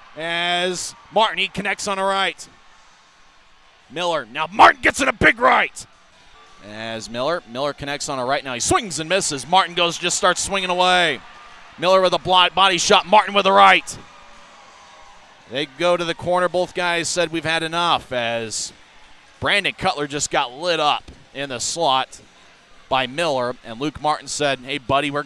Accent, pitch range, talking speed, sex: American, 140-185 Hz, 175 wpm, male